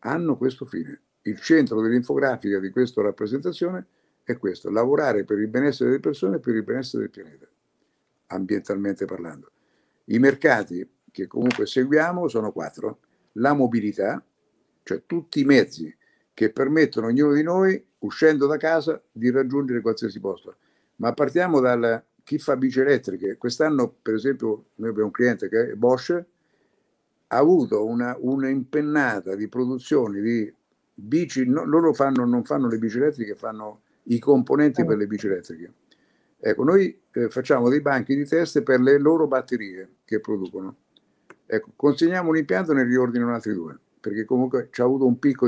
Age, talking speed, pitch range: 60-79, 160 wpm, 110-145 Hz